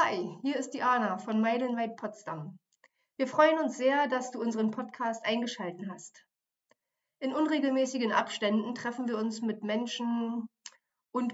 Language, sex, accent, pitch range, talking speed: German, female, German, 220-265 Hz, 145 wpm